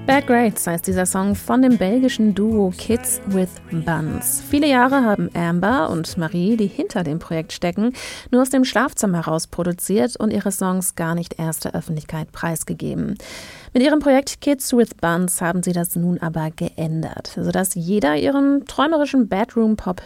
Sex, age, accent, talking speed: female, 30-49, German, 160 wpm